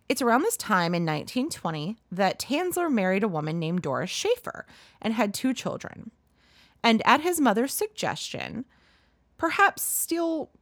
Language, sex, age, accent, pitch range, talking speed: English, female, 30-49, American, 165-255 Hz, 140 wpm